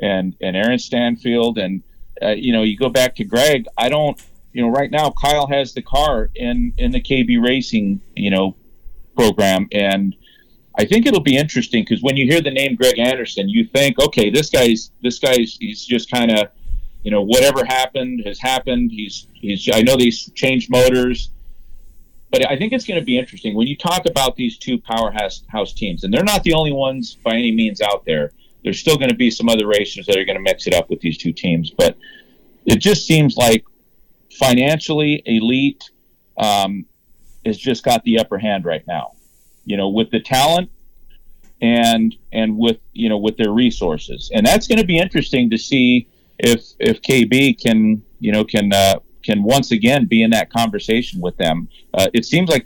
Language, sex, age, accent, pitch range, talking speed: English, male, 40-59, American, 110-135 Hz, 200 wpm